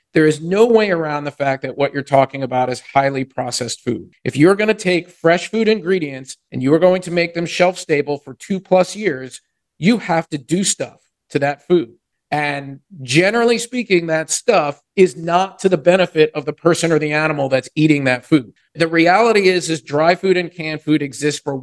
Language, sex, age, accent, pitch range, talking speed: English, male, 50-69, American, 140-180 Hz, 210 wpm